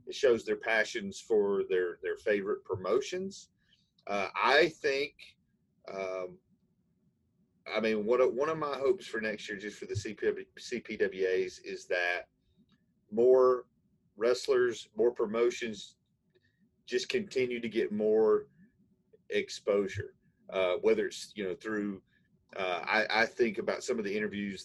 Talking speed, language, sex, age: 135 wpm, English, male, 40-59